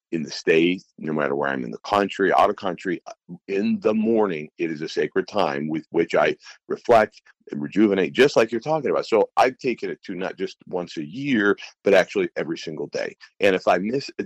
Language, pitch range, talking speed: English, 90-125 Hz, 220 wpm